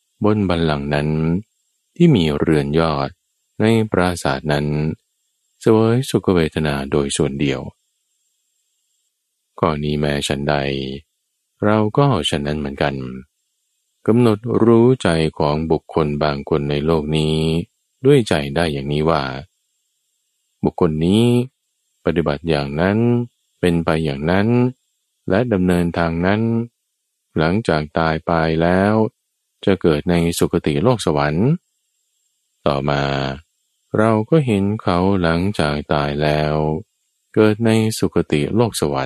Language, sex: Thai, male